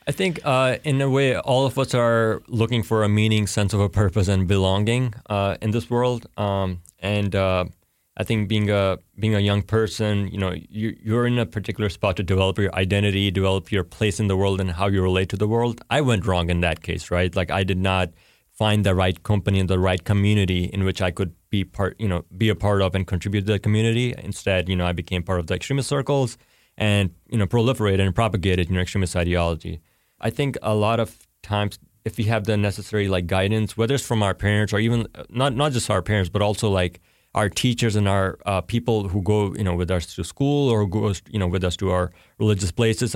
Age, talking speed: 20-39, 235 wpm